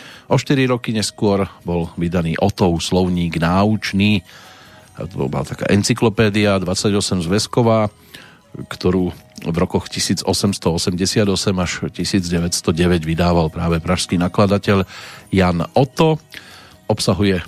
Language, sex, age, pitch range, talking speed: Slovak, male, 40-59, 90-110 Hz, 100 wpm